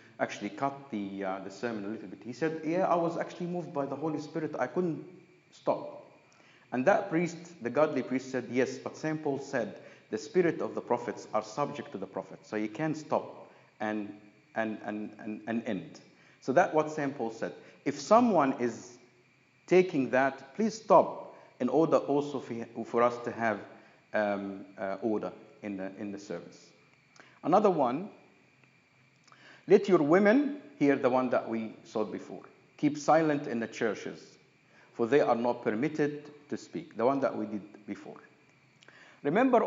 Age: 50-69